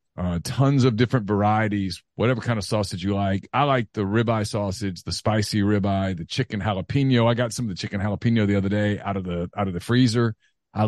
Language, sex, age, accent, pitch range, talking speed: English, male, 40-59, American, 100-125 Hz, 220 wpm